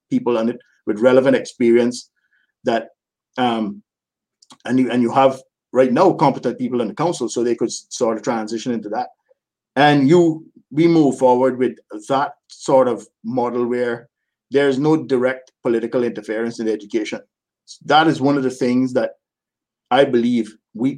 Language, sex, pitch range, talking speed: English, male, 120-140 Hz, 165 wpm